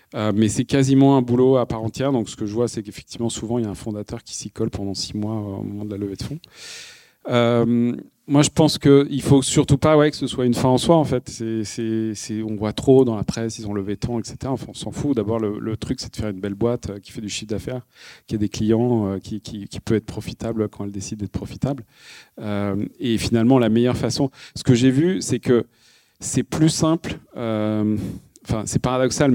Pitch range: 110-135 Hz